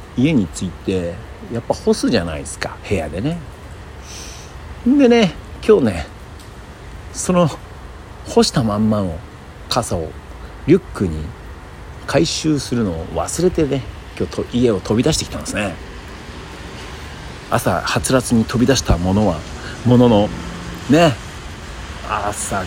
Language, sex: Japanese, male